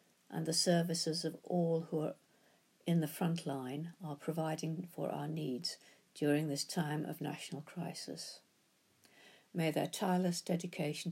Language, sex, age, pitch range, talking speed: English, female, 60-79, 150-175 Hz, 140 wpm